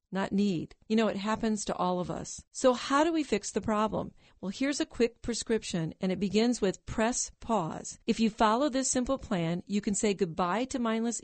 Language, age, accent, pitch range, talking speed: English, 50-69, American, 190-250 Hz, 215 wpm